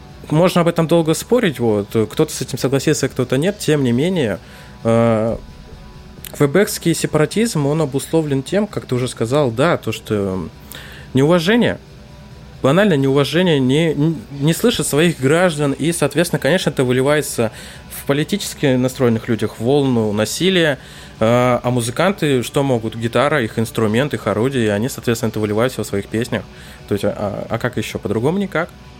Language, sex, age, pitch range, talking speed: Russian, male, 20-39, 115-150 Hz, 145 wpm